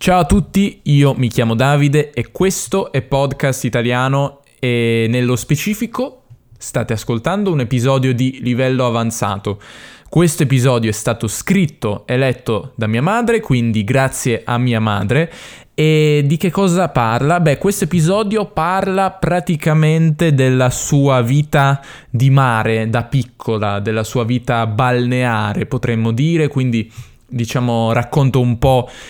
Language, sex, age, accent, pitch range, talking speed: Italian, male, 10-29, native, 115-145 Hz, 135 wpm